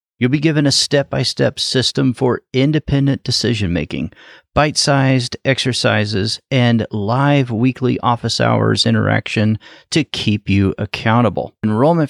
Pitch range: 100-140 Hz